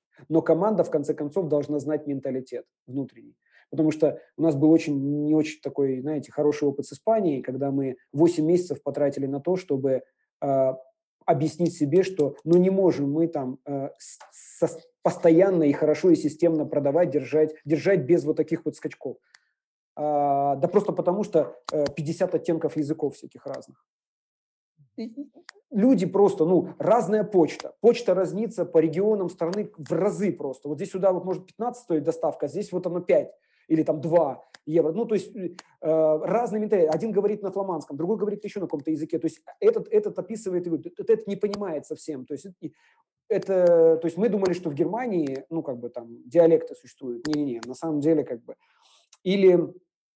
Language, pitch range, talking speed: Russian, 150-190 Hz, 175 wpm